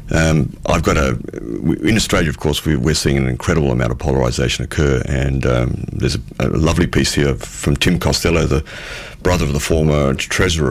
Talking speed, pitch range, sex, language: 185 wpm, 75-90 Hz, male, English